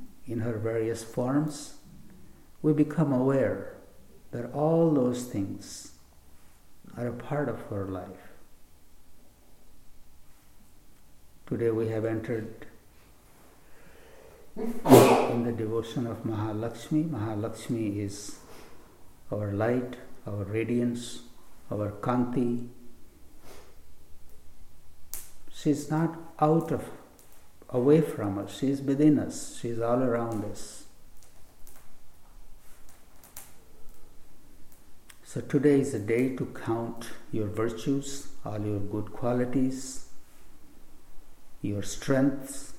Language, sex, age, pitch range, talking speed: English, male, 60-79, 100-130 Hz, 95 wpm